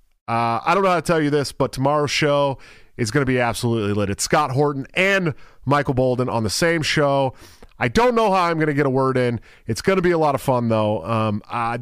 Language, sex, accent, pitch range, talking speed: English, male, American, 100-140 Hz, 255 wpm